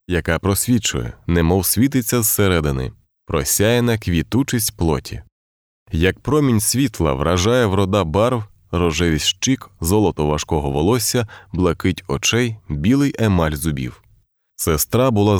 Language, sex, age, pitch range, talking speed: Ukrainian, male, 20-39, 85-115 Hz, 100 wpm